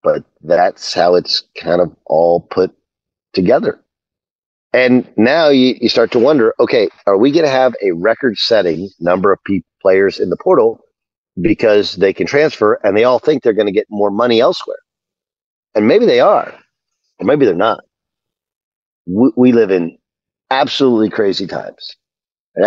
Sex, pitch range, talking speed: male, 95-140 Hz, 165 wpm